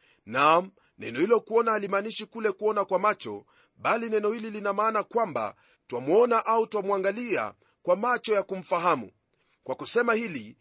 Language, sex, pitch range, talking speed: Swahili, male, 195-230 Hz, 140 wpm